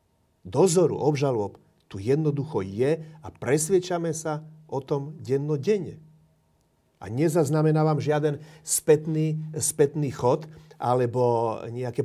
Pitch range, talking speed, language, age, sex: 115-155 Hz, 95 wpm, Slovak, 40-59, male